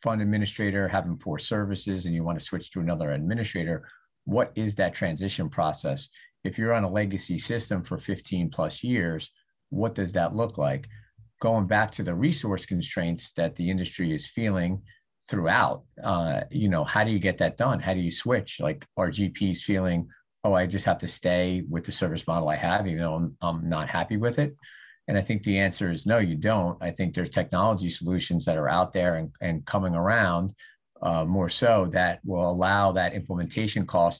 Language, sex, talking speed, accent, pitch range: English, male, 200 wpm, American, 85-105 Hz